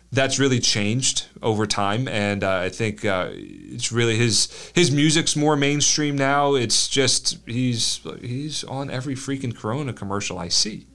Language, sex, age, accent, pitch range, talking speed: English, male, 30-49, American, 110-140 Hz, 160 wpm